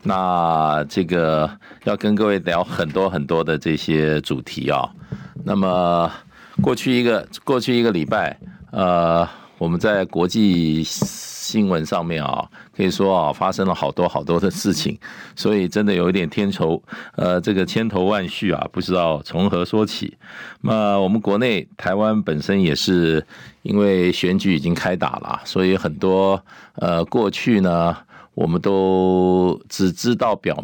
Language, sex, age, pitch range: Chinese, male, 50-69, 80-95 Hz